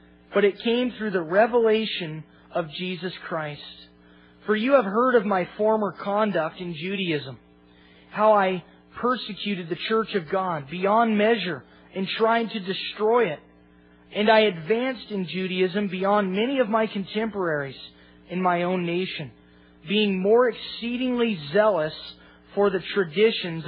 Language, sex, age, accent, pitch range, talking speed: English, male, 30-49, American, 155-215 Hz, 135 wpm